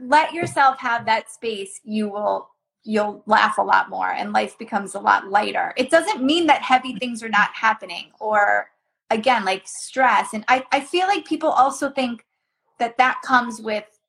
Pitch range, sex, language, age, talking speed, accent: 225-295 Hz, female, English, 20-39, 185 wpm, American